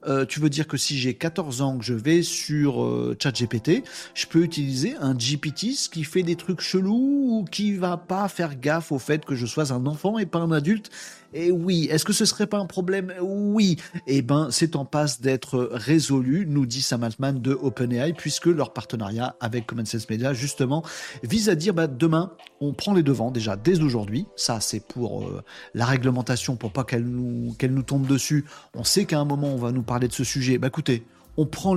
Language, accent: French, French